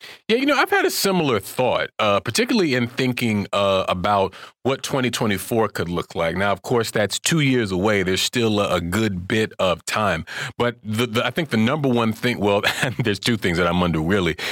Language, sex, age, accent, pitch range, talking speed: English, male, 30-49, American, 95-120 Hz, 205 wpm